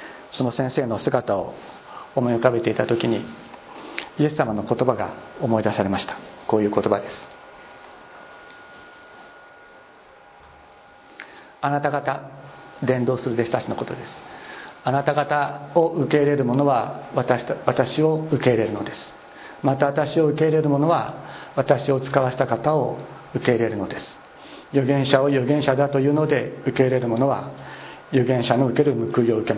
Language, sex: Japanese, male